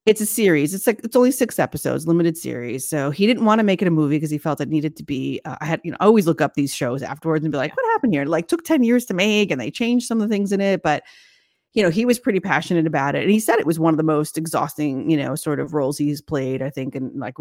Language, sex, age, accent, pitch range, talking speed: English, female, 30-49, American, 150-190 Hz, 305 wpm